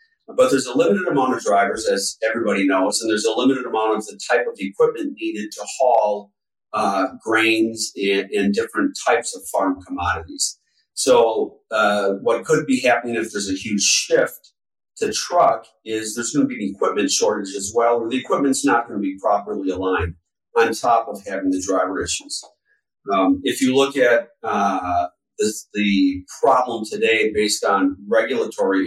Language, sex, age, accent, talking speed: English, male, 40-59, American, 175 wpm